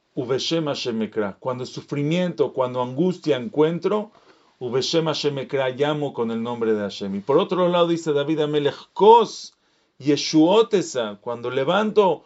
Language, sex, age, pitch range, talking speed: English, male, 40-59, 125-170 Hz, 100 wpm